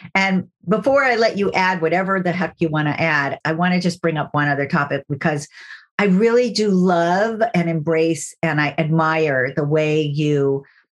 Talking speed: 190 wpm